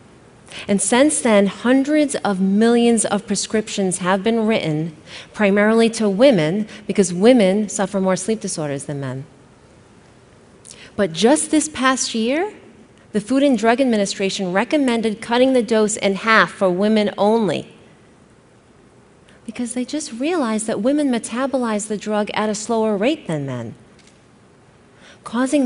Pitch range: 195-250 Hz